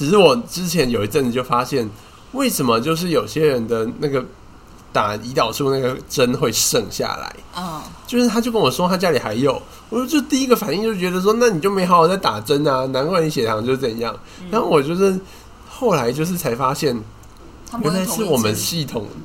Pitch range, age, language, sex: 115-175 Hz, 20-39, Chinese, male